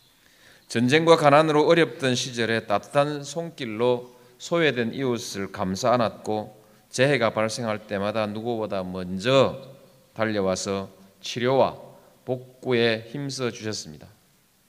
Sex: male